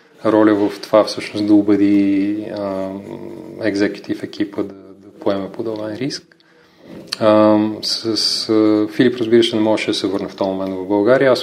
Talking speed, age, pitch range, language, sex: 155 wpm, 30-49, 100-115 Hz, Bulgarian, male